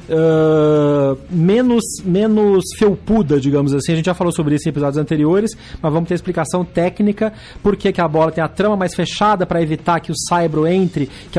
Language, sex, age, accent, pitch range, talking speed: Portuguese, male, 30-49, Brazilian, 150-190 Hz, 190 wpm